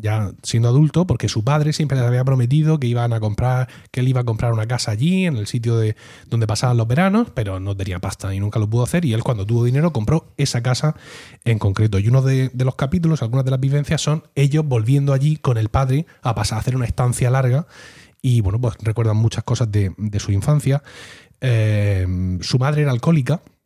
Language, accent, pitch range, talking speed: Spanish, Spanish, 110-140 Hz, 225 wpm